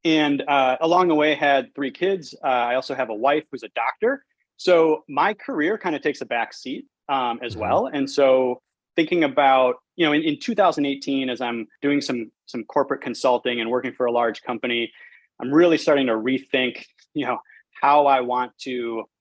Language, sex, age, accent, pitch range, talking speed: English, male, 30-49, American, 125-150 Hz, 195 wpm